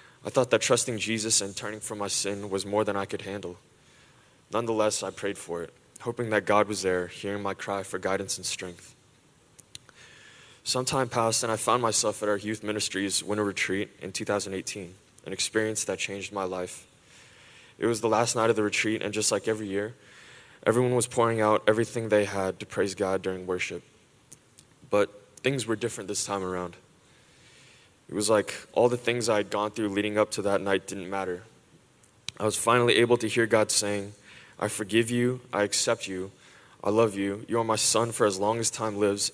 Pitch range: 100-110 Hz